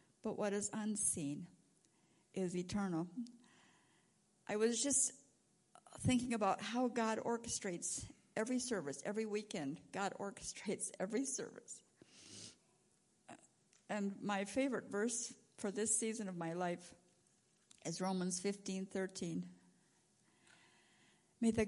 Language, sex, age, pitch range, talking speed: English, female, 50-69, 195-245 Hz, 105 wpm